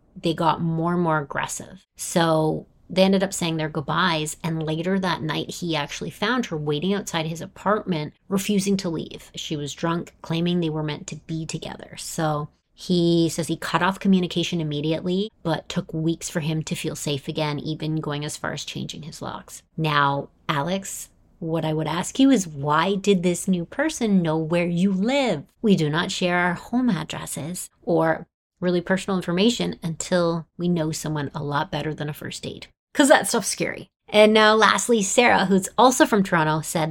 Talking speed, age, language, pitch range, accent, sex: 185 wpm, 30-49, English, 160-195 Hz, American, female